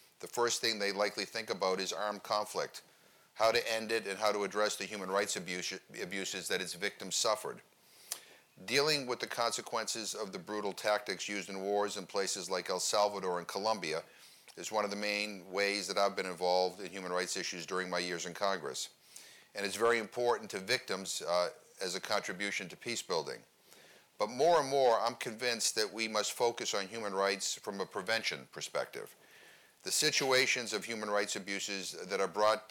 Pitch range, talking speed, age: 95-110 Hz, 185 wpm, 40-59